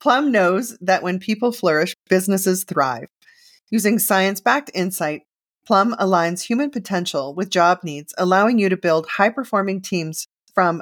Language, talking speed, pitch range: English, 140 wpm, 170-220 Hz